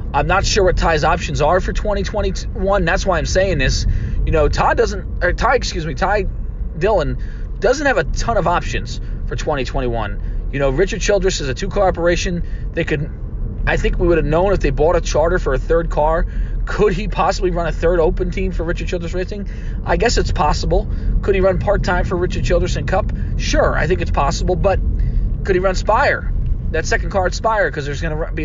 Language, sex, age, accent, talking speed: English, male, 30-49, American, 215 wpm